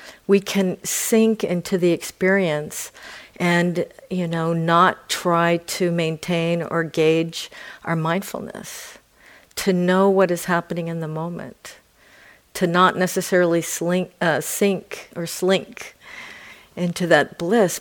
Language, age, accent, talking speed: English, 50-69, American, 120 wpm